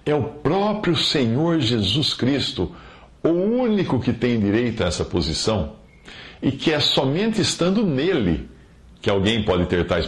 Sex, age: male, 50-69